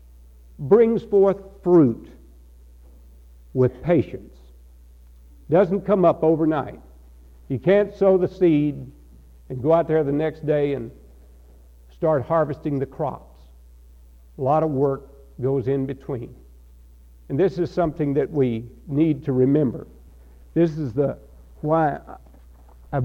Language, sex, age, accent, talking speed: English, male, 60-79, American, 120 wpm